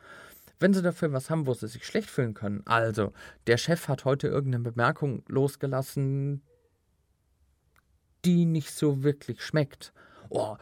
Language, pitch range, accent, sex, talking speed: German, 120-155 Hz, German, male, 140 wpm